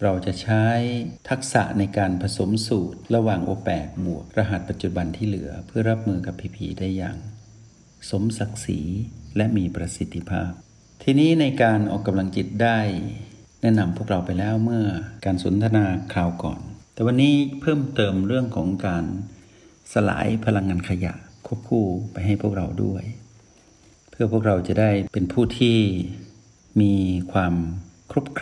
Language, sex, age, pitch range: Thai, male, 60-79, 95-115 Hz